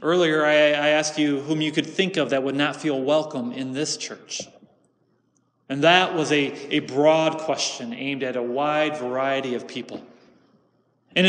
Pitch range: 155-200 Hz